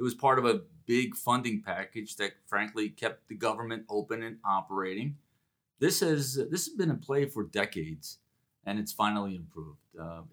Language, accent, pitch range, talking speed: English, American, 105-125 Hz, 175 wpm